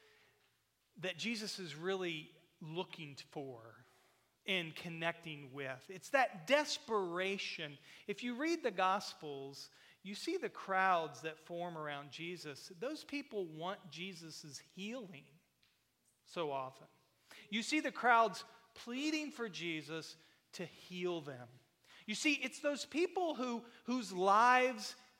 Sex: male